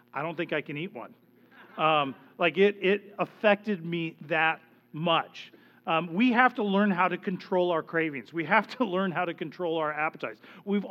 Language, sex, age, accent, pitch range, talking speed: English, male, 40-59, American, 150-200 Hz, 195 wpm